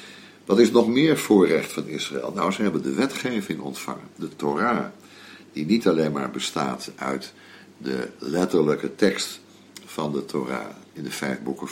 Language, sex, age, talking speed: Dutch, male, 60-79, 160 wpm